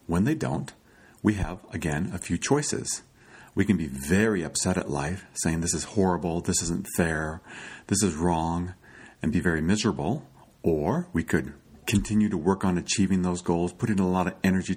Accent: American